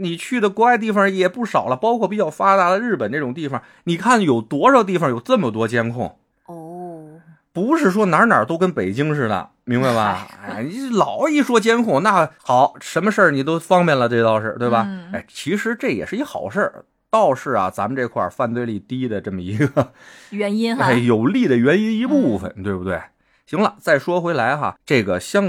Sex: male